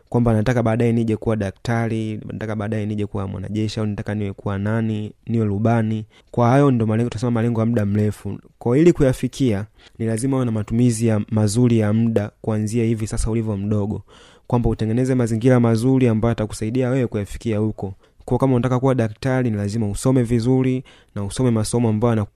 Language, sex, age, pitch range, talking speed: Swahili, male, 20-39, 110-125 Hz, 175 wpm